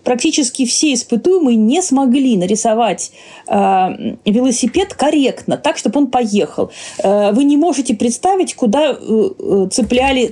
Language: Russian